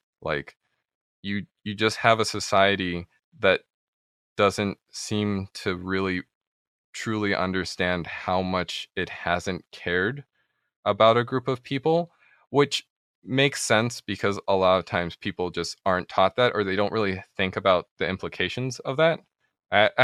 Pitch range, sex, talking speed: 95-115 Hz, male, 145 wpm